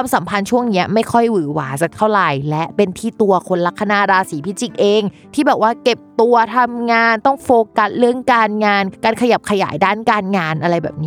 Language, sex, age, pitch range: Thai, female, 20-39, 175-230 Hz